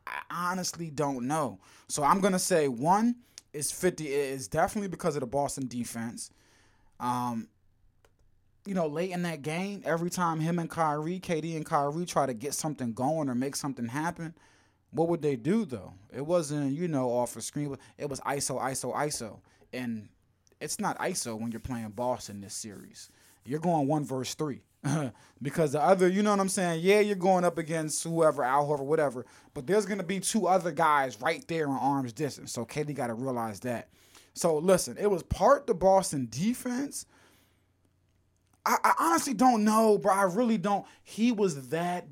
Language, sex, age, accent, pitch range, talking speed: English, male, 20-39, American, 120-180 Hz, 190 wpm